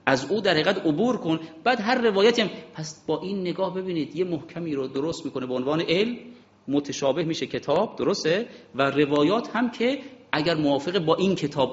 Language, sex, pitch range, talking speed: Persian, male, 130-190 Hz, 180 wpm